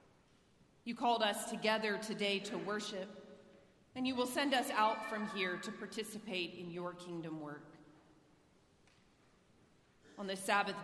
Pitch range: 180-205 Hz